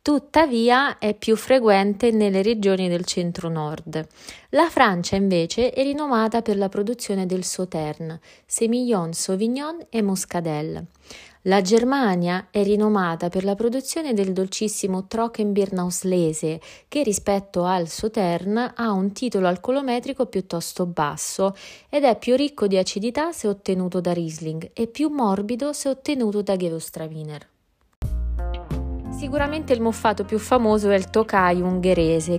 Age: 20-39